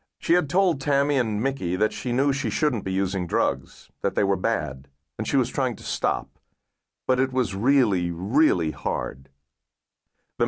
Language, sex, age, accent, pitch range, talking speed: English, male, 50-69, American, 85-135 Hz, 180 wpm